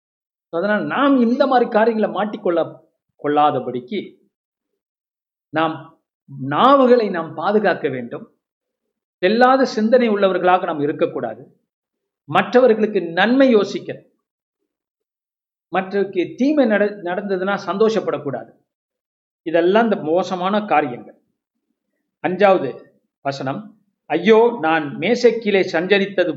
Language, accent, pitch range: Tamil, native, 170-225 Hz